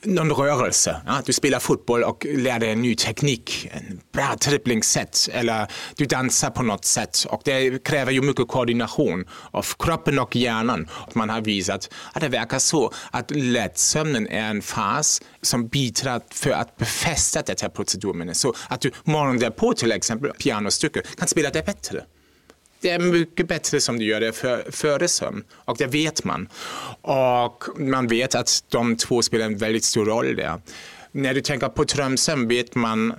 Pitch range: 110-140 Hz